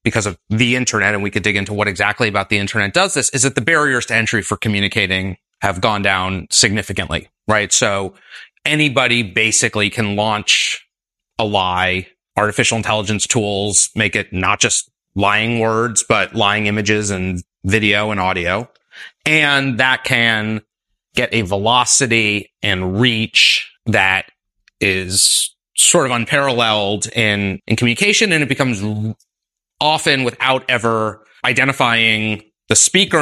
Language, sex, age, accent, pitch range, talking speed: English, male, 30-49, American, 105-125 Hz, 140 wpm